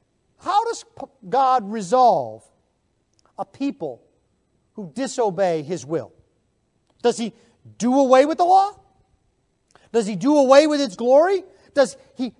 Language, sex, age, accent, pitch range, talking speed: English, male, 40-59, American, 180-275 Hz, 125 wpm